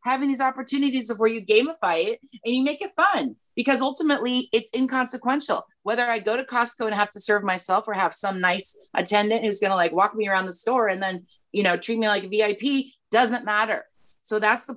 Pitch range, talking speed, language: 210-255 Hz, 220 wpm, English